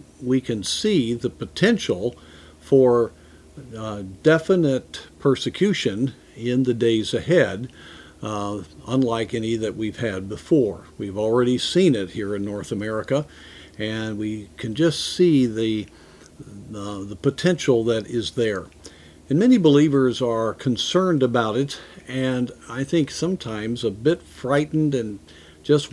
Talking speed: 130 wpm